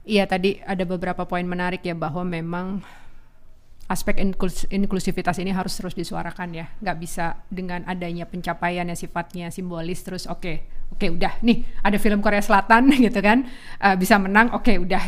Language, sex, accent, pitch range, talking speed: Indonesian, female, native, 170-195 Hz, 165 wpm